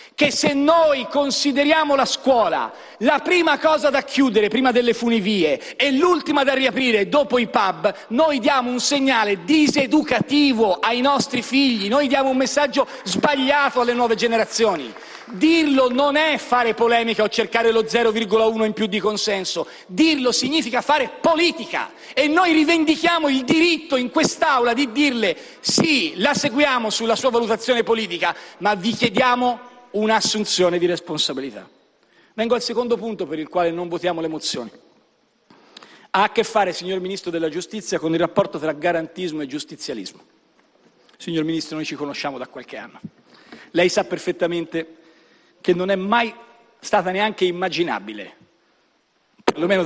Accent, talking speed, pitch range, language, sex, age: native, 145 wpm, 200-280 Hz, Italian, male, 40-59